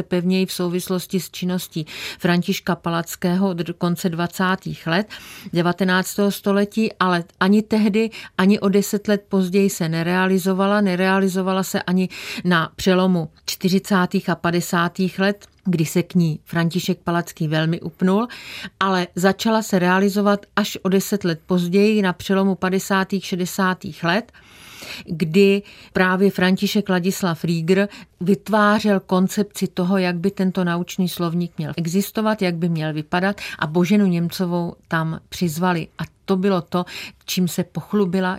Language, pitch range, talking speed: Czech, 175-195 Hz, 135 wpm